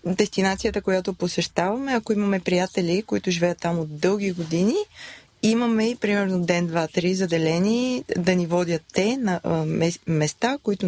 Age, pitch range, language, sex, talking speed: 20-39, 170-205 Hz, Bulgarian, female, 140 wpm